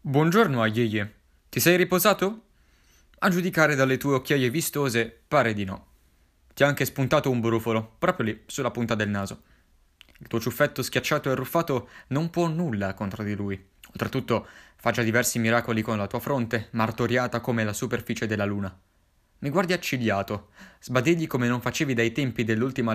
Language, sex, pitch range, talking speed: Italian, male, 110-140 Hz, 165 wpm